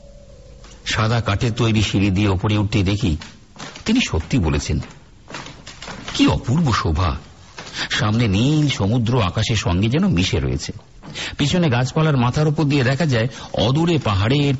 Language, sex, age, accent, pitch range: Bengali, male, 50-69, native, 90-145 Hz